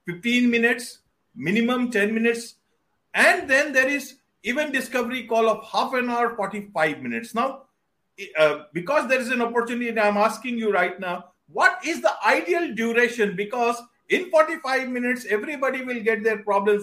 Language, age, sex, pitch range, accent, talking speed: English, 50-69, male, 205-255 Hz, Indian, 155 wpm